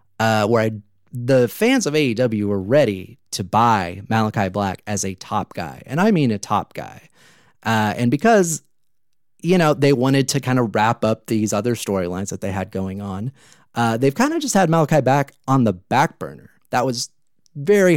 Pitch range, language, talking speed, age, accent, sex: 110-150 Hz, English, 195 wpm, 30-49, American, male